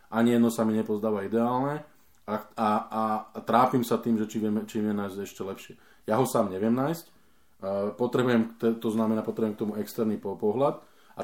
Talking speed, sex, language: 180 wpm, male, Slovak